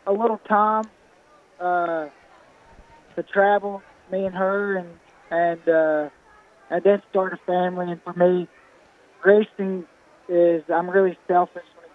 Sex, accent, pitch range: male, American, 165-185 Hz